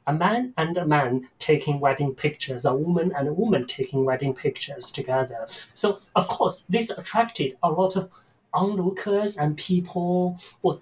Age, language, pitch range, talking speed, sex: 30-49, English, 150-200 Hz, 160 wpm, male